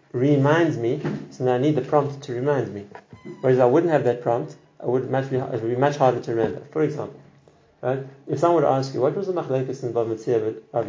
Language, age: English, 30-49